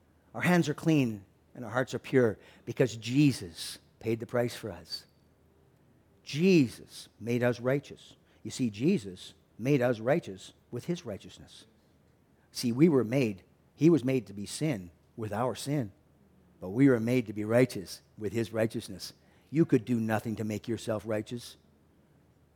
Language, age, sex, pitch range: English, 50-69, male, 100-155 Hz